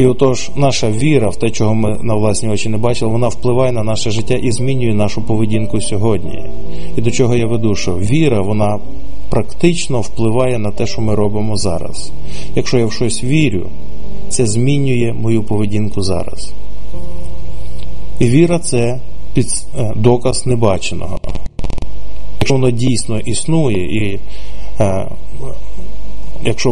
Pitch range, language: 105-125 Hz, Ukrainian